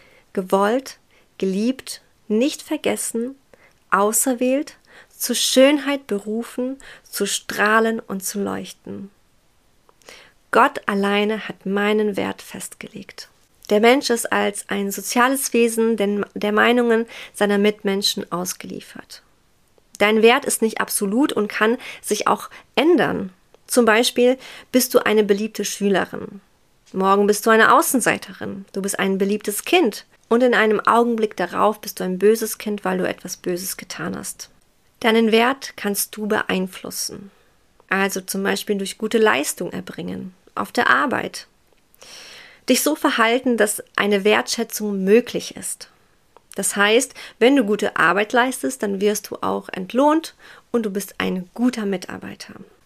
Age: 30-49